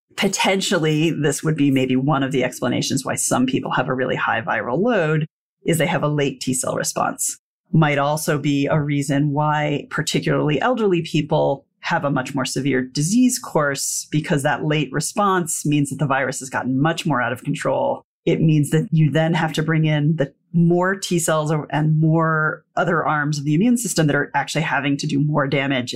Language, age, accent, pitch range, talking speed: English, 30-49, American, 140-170 Hz, 195 wpm